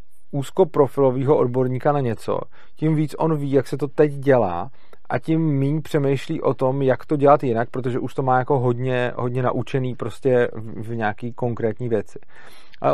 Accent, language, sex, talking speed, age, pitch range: native, Czech, male, 165 wpm, 40-59, 115-145 Hz